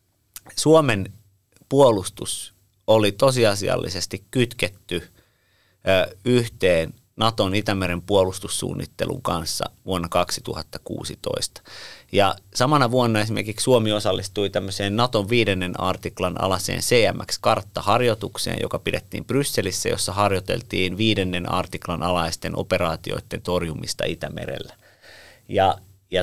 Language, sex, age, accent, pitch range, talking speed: Finnish, male, 30-49, native, 95-110 Hz, 75 wpm